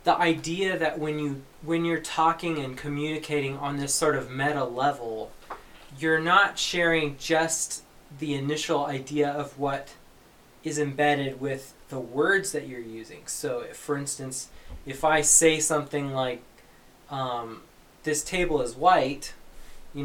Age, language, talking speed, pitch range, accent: 20-39, English, 145 wpm, 135-160 Hz, American